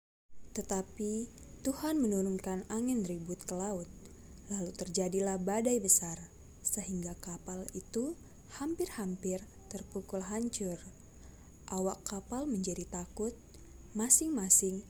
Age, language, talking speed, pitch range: 20-39, Indonesian, 90 wpm, 175-210 Hz